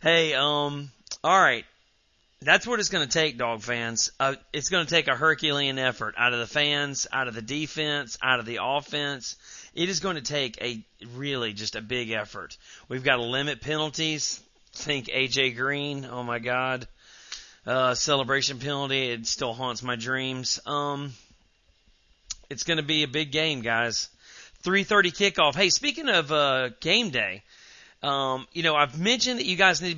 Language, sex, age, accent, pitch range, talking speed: English, male, 40-59, American, 125-165 Hz, 180 wpm